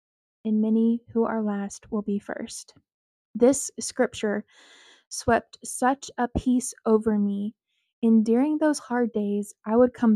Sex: female